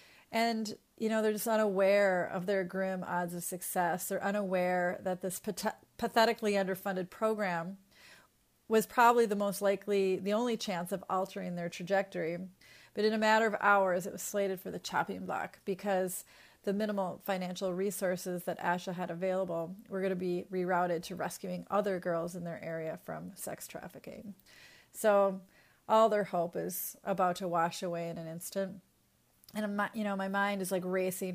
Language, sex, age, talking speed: English, female, 30-49, 170 wpm